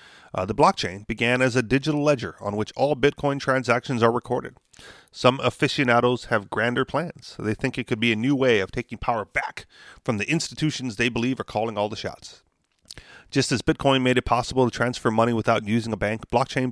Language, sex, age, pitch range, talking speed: English, male, 40-59, 115-135 Hz, 200 wpm